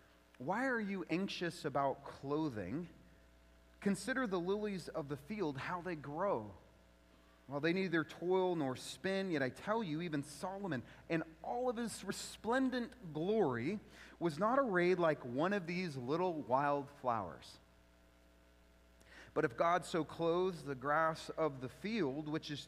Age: 30-49